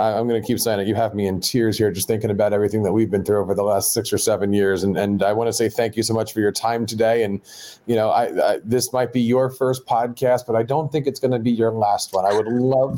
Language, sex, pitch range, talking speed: English, male, 130-165 Hz, 305 wpm